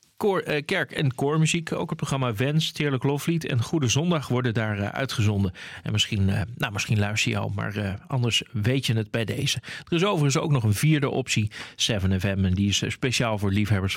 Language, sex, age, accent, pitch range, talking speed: Dutch, male, 40-59, Dutch, 110-145 Hz, 210 wpm